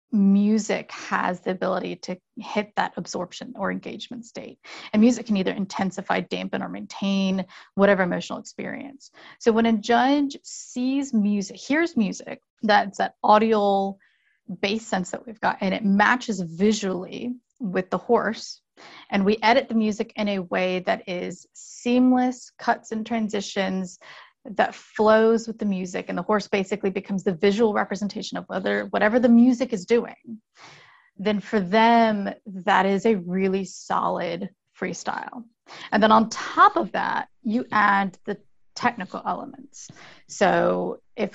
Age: 30-49